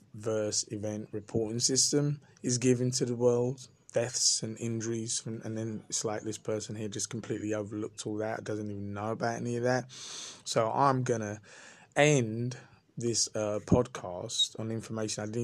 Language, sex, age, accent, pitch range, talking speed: English, male, 20-39, British, 105-125 Hz, 170 wpm